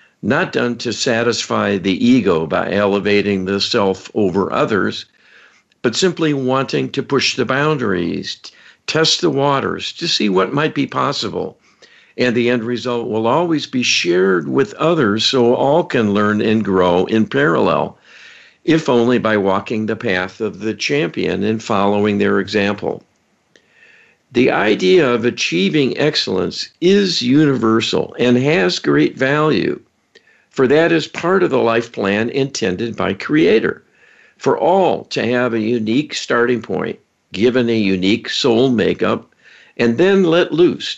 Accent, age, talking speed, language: American, 60-79, 145 wpm, English